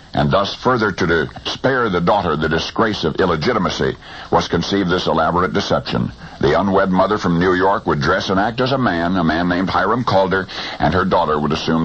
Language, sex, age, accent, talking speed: English, male, 60-79, American, 200 wpm